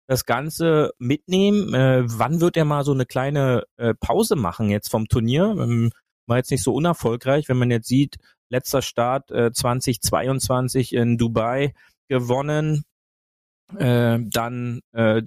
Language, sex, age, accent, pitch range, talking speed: German, male, 30-49, German, 120-150 Hz, 145 wpm